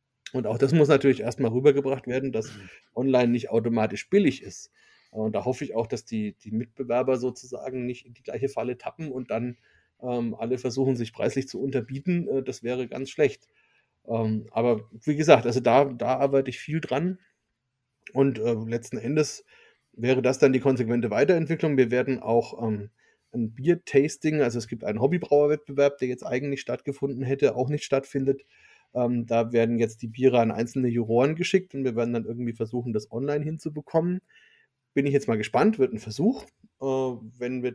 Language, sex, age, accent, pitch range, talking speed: German, male, 30-49, German, 120-145 Hz, 175 wpm